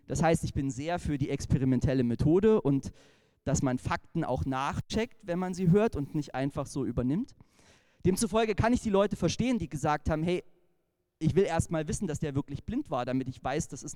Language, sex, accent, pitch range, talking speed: German, male, German, 135-185 Hz, 210 wpm